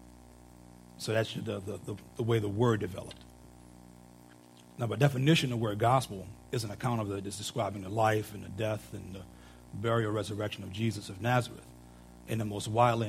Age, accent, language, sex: 40-59, American, English, male